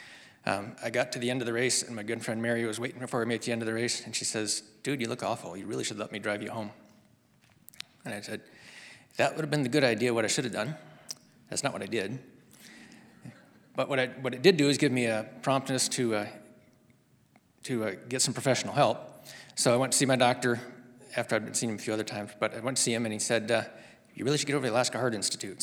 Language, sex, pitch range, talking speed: English, male, 115-130 Hz, 265 wpm